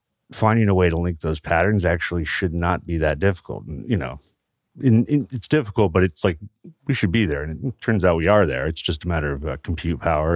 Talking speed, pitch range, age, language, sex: 240 wpm, 80-100 Hz, 40-59, English, male